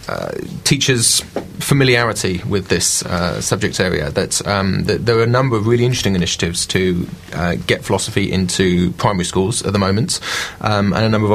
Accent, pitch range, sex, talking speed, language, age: British, 95-125 Hz, male, 180 wpm, English, 30-49